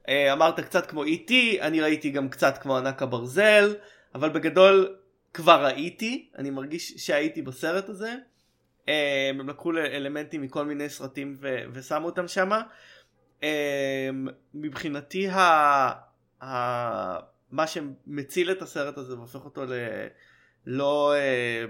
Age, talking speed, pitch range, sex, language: 20-39, 115 wpm, 130-165 Hz, male, Hebrew